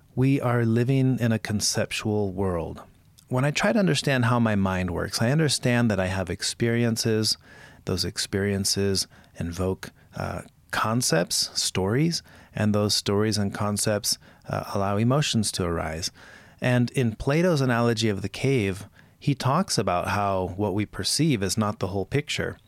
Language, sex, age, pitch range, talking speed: English, male, 30-49, 100-125 Hz, 150 wpm